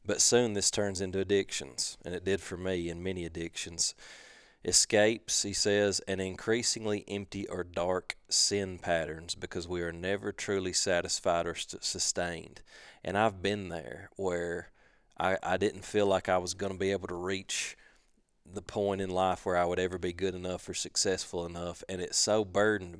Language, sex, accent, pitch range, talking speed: English, male, American, 90-100 Hz, 180 wpm